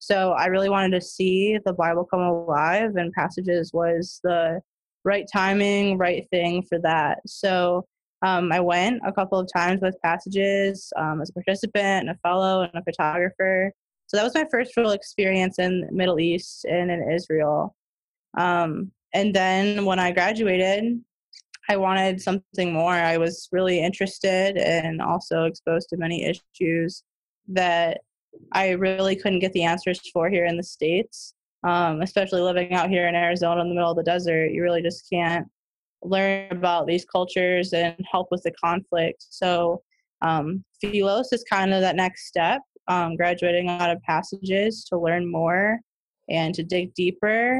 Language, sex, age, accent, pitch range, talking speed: English, female, 20-39, American, 170-195 Hz, 170 wpm